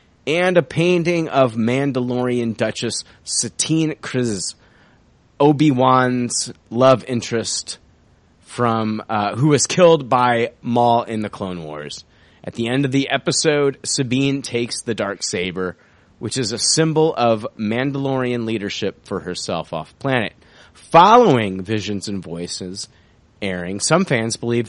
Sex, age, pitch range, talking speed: male, 30-49, 100-130 Hz, 125 wpm